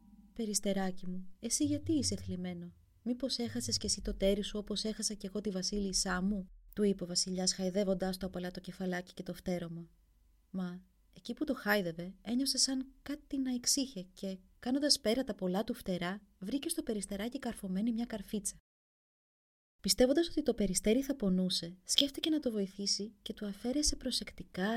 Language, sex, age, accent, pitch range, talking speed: Greek, female, 30-49, native, 180-235 Hz, 165 wpm